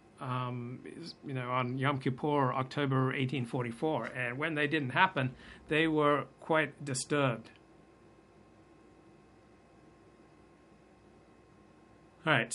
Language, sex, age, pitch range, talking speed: English, male, 60-79, 130-165 Hz, 95 wpm